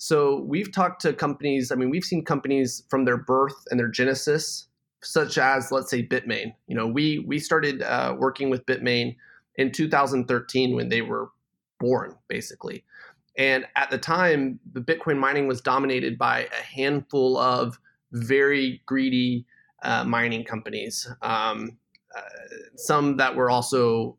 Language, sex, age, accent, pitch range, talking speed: English, male, 30-49, American, 125-145 Hz, 150 wpm